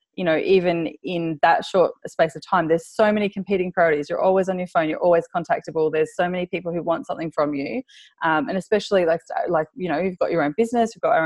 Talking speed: 245 wpm